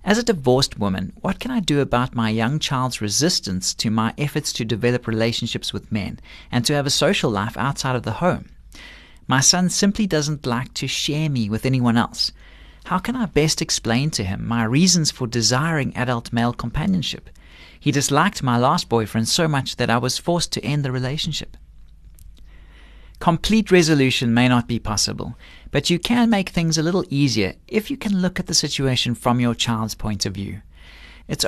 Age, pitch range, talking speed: 40-59, 110-155 Hz, 190 wpm